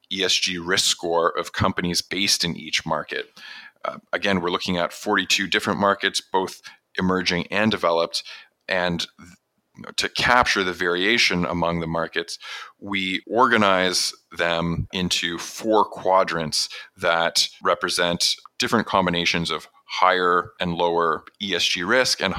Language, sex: English, male